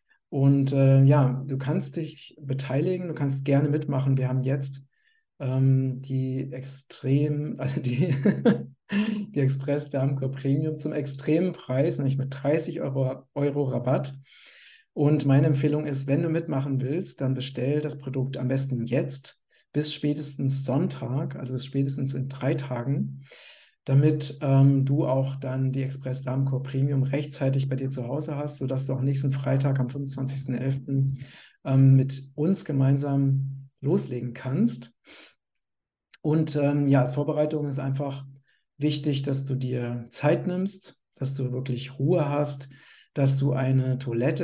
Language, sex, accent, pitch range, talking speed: German, male, German, 135-145 Hz, 140 wpm